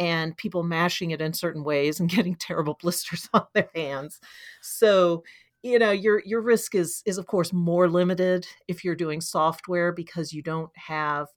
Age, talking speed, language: 40-59, 180 wpm, English